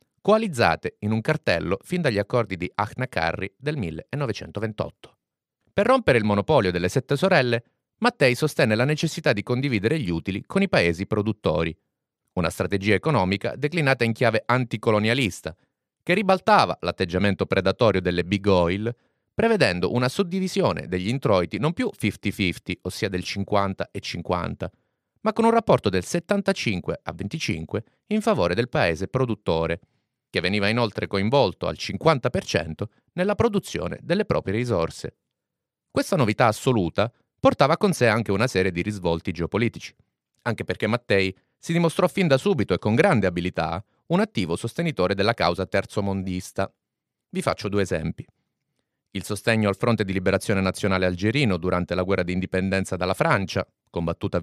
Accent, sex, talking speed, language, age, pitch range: native, male, 140 wpm, Italian, 30-49, 95-130 Hz